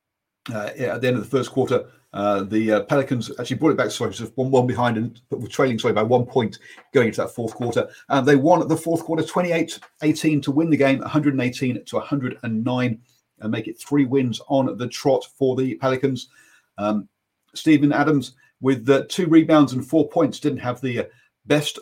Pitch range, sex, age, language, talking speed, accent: 110-145 Hz, male, 40-59, English, 200 wpm, British